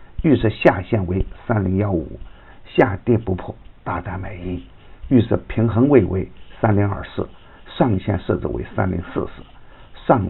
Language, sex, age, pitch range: Chinese, male, 50-69, 90-115 Hz